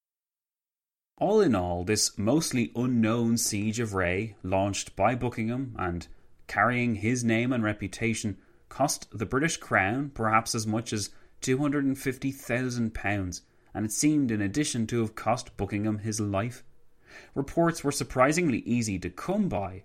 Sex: male